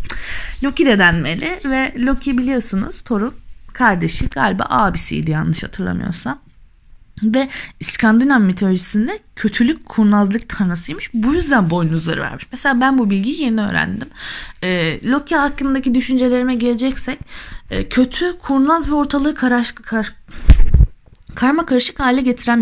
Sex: female